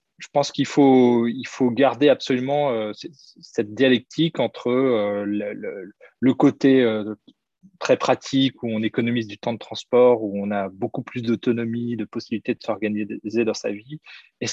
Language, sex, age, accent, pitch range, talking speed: French, male, 20-39, French, 110-130 Hz, 155 wpm